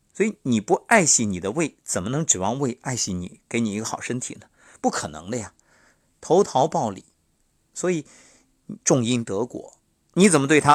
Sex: male